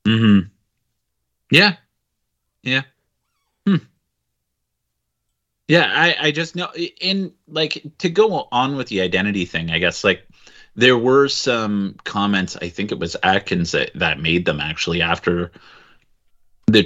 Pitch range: 90-125 Hz